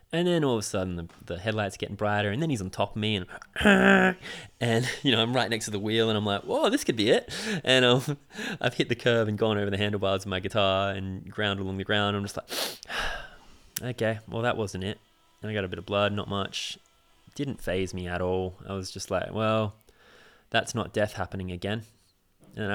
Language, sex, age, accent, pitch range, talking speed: English, male, 20-39, Australian, 95-110 Hz, 240 wpm